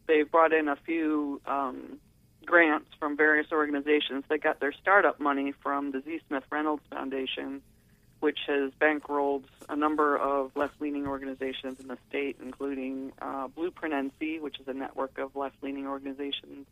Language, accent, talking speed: English, American, 155 wpm